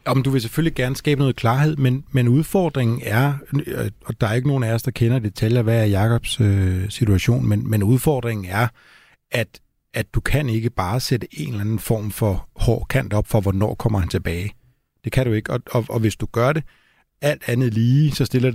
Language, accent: Danish, native